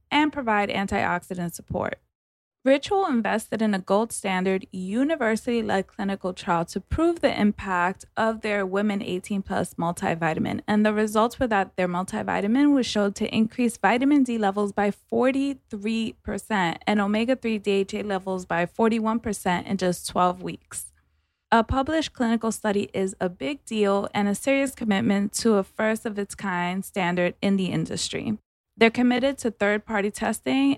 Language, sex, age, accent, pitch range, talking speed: English, female, 20-39, American, 195-240 Hz, 140 wpm